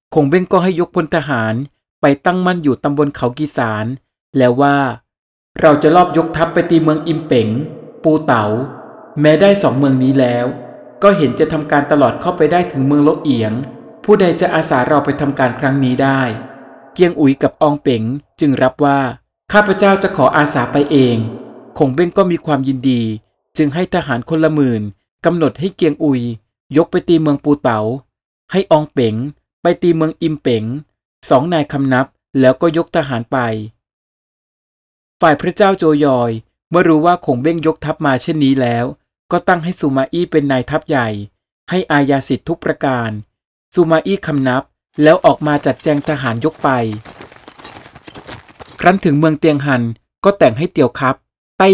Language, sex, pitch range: Thai, male, 125-165 Hz